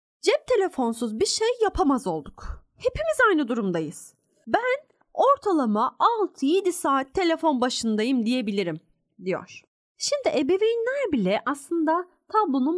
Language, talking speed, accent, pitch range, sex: Turkish, 105 wpm, native, 215-335 Hz, female